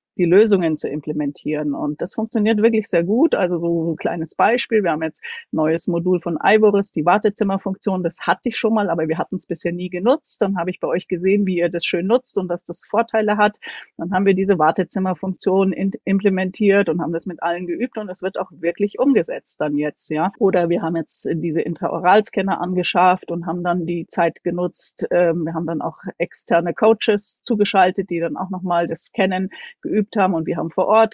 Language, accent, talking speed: German, German, 210 wpm